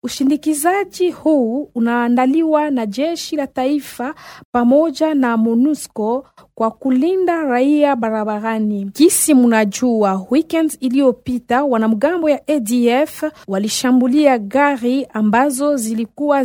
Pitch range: 230-280 Hz